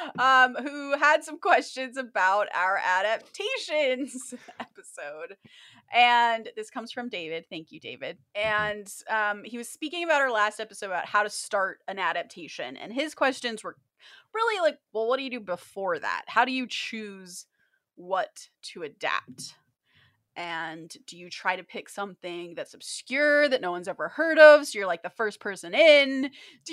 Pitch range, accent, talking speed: 205-295 Hz, American, 170 wpm